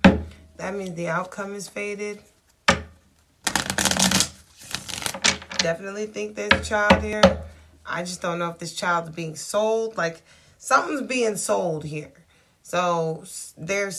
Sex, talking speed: female, 120 wpm